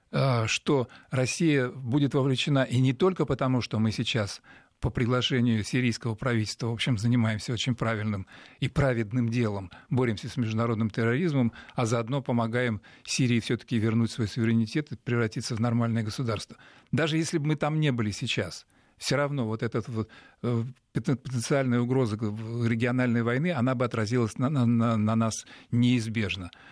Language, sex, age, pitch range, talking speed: Russian, male, 40-59, 115-130 Hz, 145 wpm